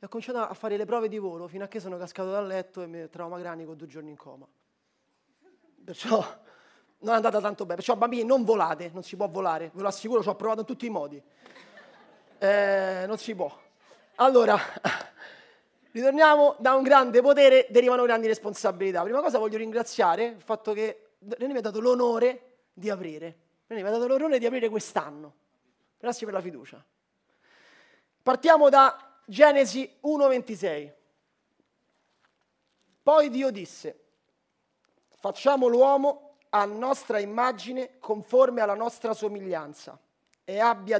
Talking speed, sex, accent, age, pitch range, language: 155 wpm, male, native, 30-49, 185-250 Hz, Italian